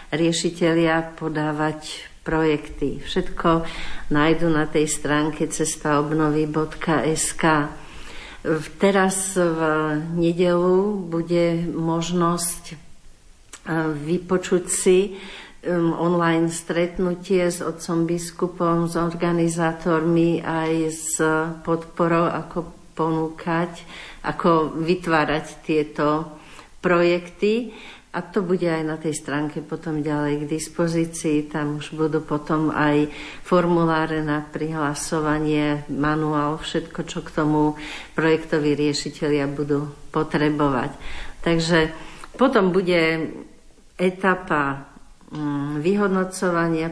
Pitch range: 155-170 Hz